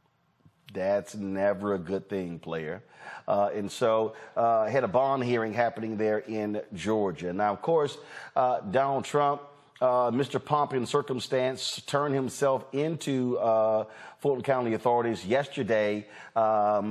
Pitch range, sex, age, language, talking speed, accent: 110-135 Hz, male, 40-59, English, 130 wpm, American